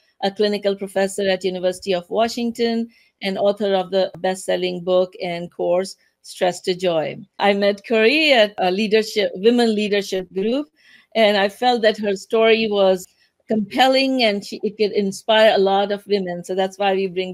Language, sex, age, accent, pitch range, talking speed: English, female, 50-69, Indian, 190-240 Hz, 170 wpm